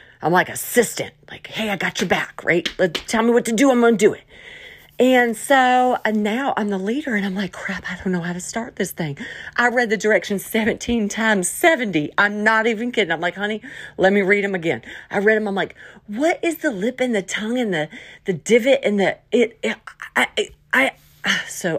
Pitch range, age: 175-255 Hz, 40-59